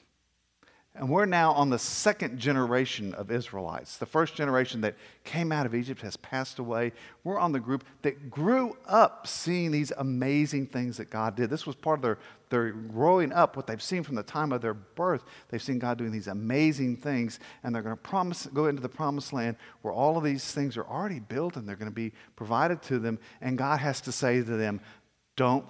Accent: American